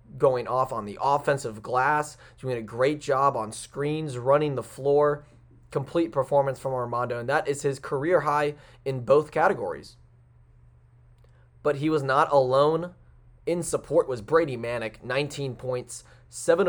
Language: English